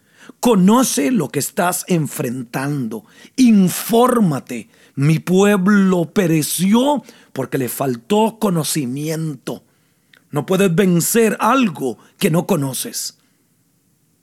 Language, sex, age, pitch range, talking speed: Spanish, male, 40-59, 145-220 Hz, 85 wpm